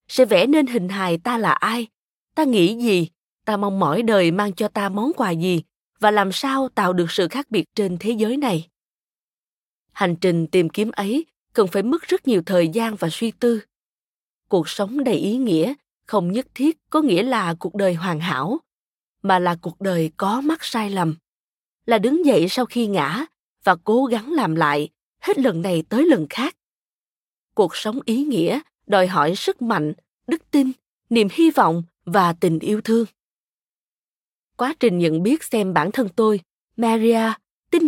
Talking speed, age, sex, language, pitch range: 180 wpm, 20-39, female, Vietnamese, 185-250 Hz